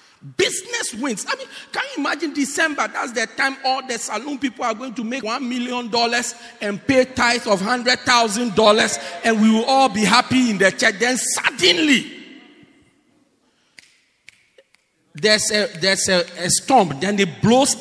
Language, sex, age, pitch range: English, male, 50-69, 180-295 Hz